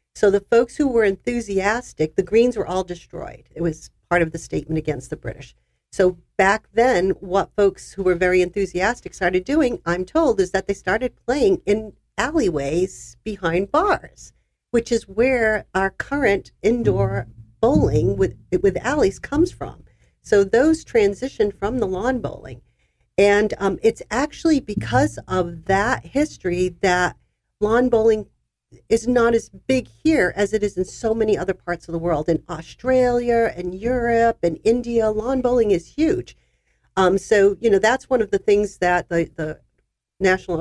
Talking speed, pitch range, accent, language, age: 165 wpm, 165-220 Hz, American, English, 50-69